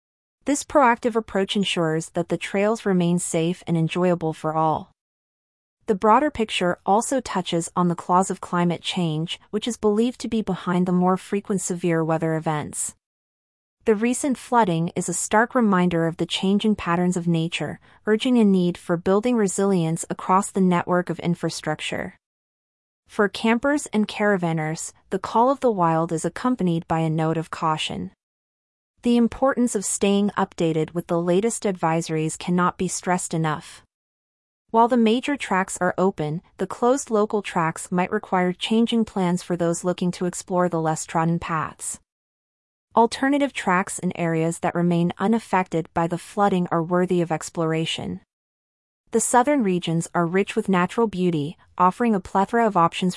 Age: 30-49